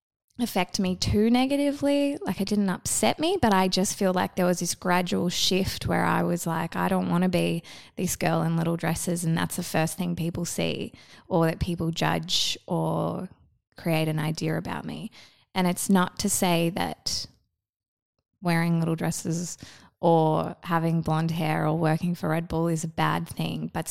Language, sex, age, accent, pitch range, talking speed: English, female, 20-39, Australian, 160-185 Hz, 185 wpm